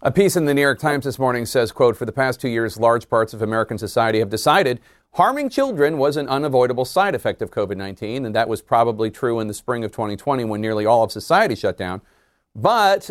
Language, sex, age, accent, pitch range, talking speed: English, male, 40-59, American, 115-155 Hz, 230 wpm